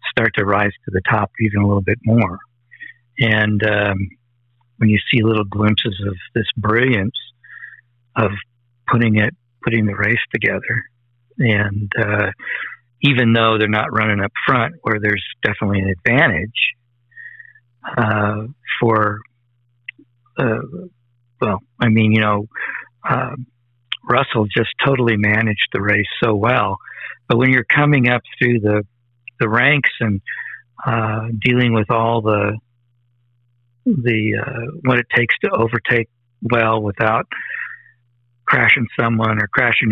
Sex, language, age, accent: male, English, 50-69, American